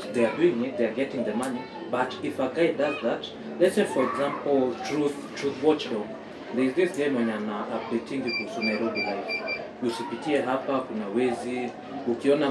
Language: Swahili